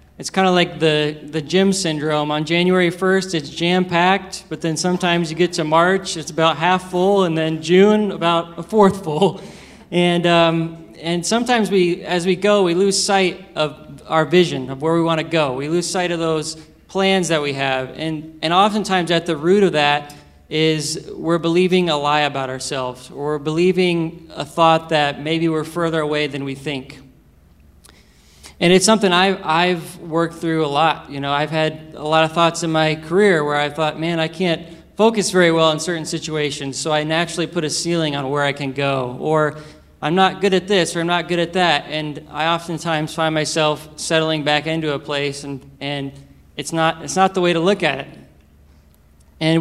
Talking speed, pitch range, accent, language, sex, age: 200 wpm, 150-175 Hz, American, English, male, 20-39